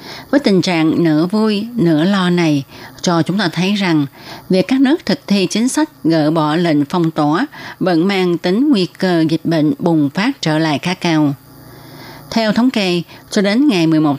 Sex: female